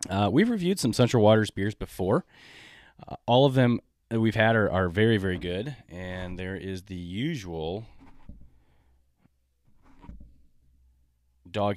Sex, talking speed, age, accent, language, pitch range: male, 135 wpm, 30-49, American, English, 90-115 Hz